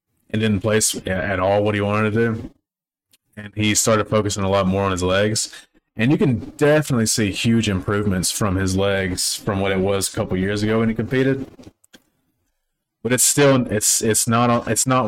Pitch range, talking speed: 95-110 Hz, 195 wpm